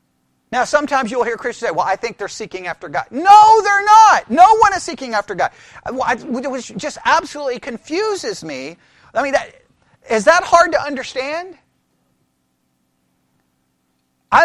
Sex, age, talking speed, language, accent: male, 40-59, 145 wpm, English, American